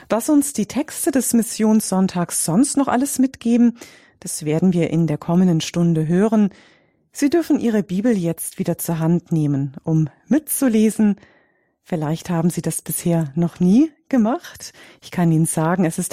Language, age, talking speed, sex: English, 40-59, 160 wpm, female